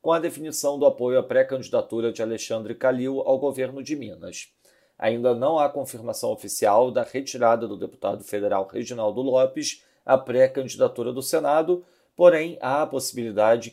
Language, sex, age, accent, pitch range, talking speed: Portuguese, male, 40-59, Brazilian, 120-145 Hz, 150 wpm